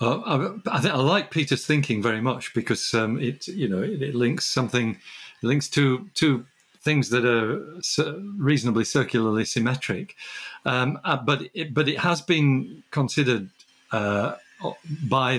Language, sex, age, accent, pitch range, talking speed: English, male, 50-69, British, 115-145 Hz, 155 wpm